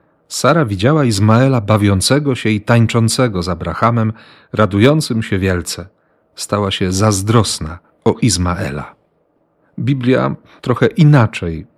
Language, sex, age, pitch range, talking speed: Polish, male, 40-59, 100-125 Hz, 100 wpm